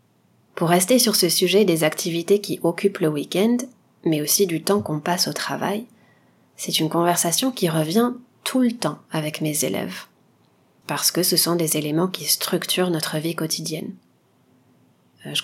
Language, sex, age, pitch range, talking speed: French, female, 30-49, 160-200 Hz, 165 wpm